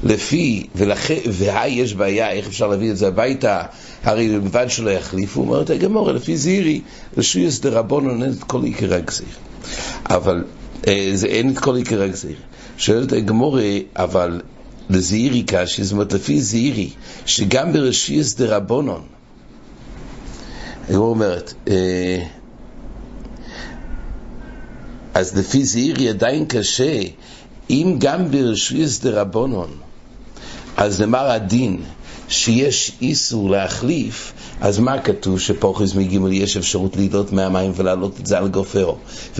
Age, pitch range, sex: 60-79, 100-130 Hz, male